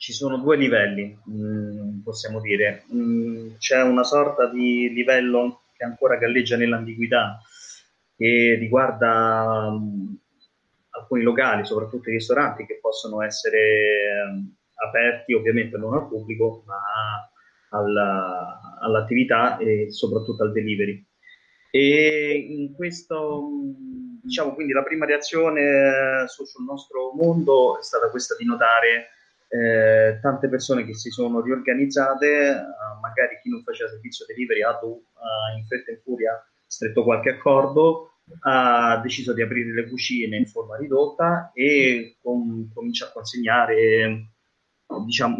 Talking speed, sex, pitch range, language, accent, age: 120 wpm, male, 110-140 Hz, Italian, native, 30-49